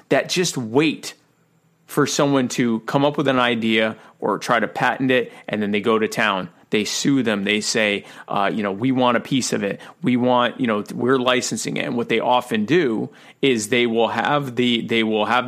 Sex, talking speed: male, 215 wpm